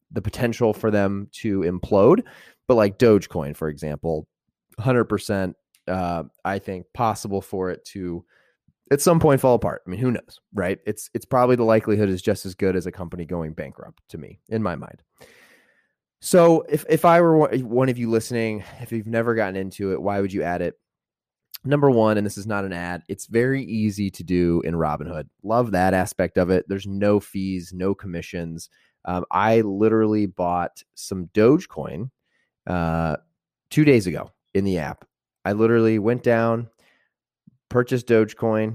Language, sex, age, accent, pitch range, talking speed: English, male, 20-39, American, 90-115 Hz, 175 wpm